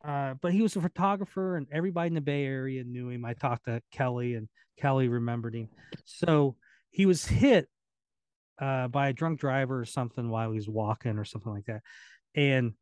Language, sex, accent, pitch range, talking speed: English, male, American, 120-160 Hz, 195 wpm